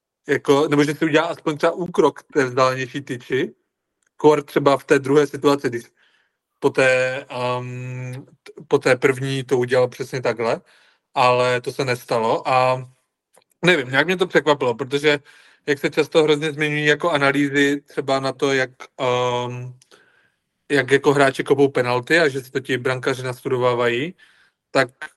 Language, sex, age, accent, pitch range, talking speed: Czech, male, 40-59, native, 125-145 Hz, 155 wpm